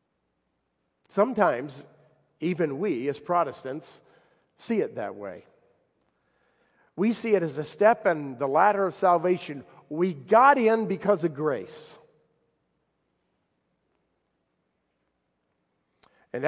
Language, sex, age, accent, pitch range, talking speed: English, male, 50-69, American, 135-215 Hz, 100 wpm